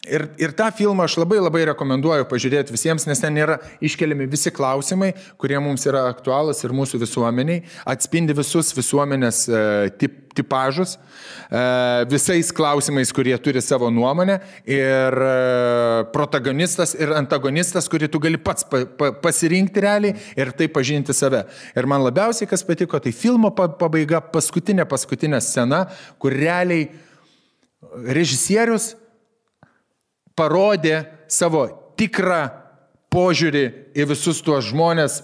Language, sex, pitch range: English, male, 130-170 Hz